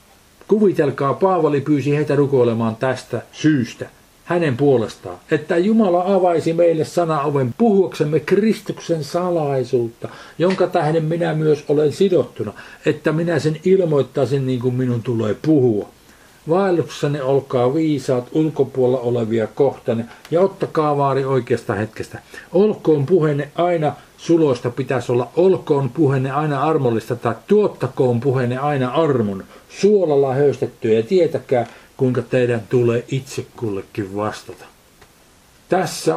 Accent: native